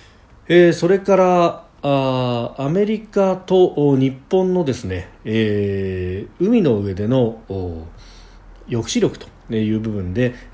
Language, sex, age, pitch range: Japanese, male, 40-59, 105-165 Hz